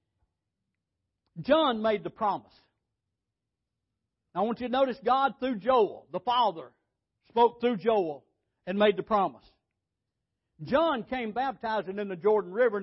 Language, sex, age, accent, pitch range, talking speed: English, male, 60-79, American, 185-250 Hz, 130 wpm